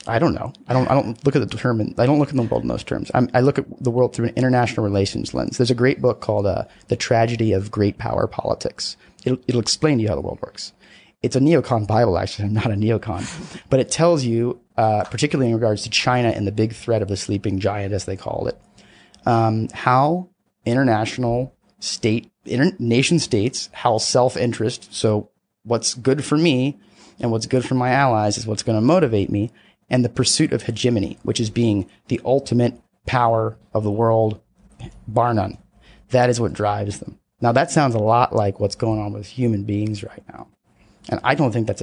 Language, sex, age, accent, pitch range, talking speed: English, male, 30-49, American, 110-130 Hz, 215 wpm